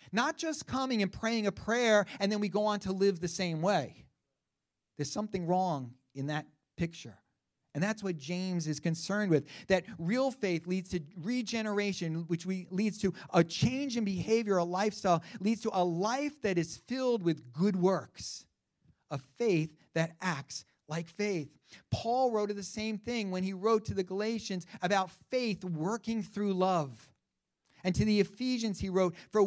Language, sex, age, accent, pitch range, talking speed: English, male, 40-59, American, 160-215 Hz, 175 wpm